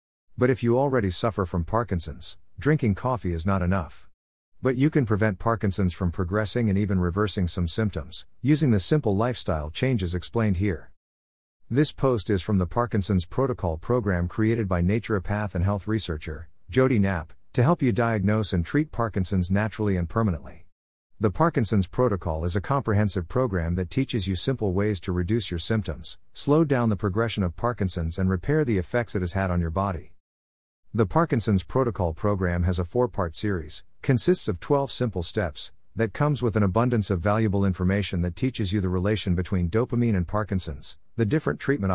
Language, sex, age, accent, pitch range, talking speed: English, male, 50-69, American, 90-115 Hz, 175 wpm